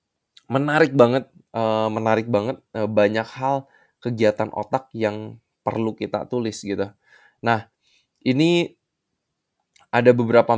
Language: Indonesian